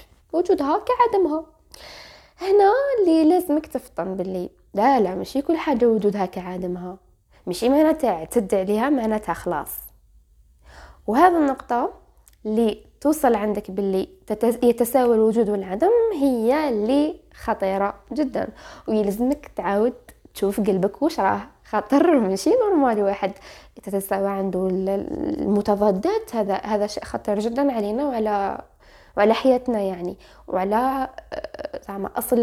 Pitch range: 200-285 Hz